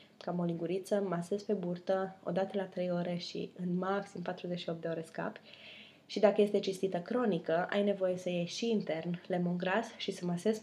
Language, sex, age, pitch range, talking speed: English, female, 20-39, 175-200 Hz, 180 wpm